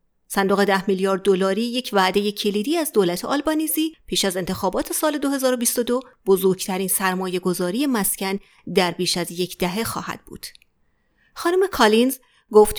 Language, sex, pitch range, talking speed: Persian, female, 195-260 Hz, 130 wpm